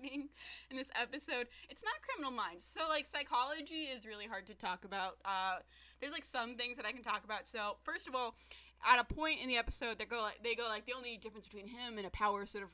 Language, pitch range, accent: English, 180-240 Hz, American